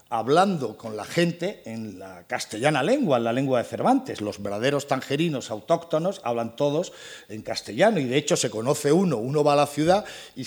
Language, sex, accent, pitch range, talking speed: Spanish, male, Spanish, 125-180 Hz, 190 wpm